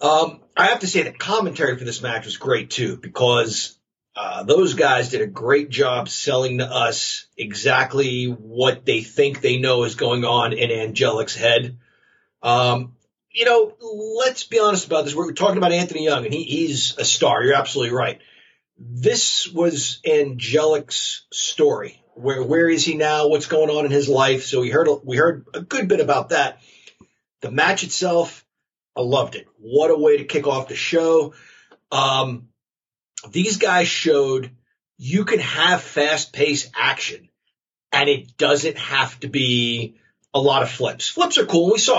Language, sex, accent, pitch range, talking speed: English, male, American, 130-185 Hz, 175 wpm